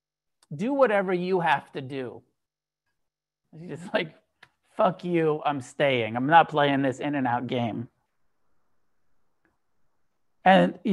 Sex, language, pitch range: male, English, 150-210 Hz